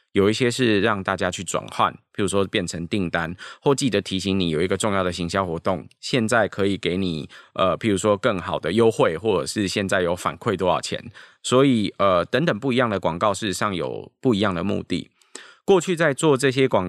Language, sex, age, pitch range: Chinese, male, 20-39, 90-115 Hz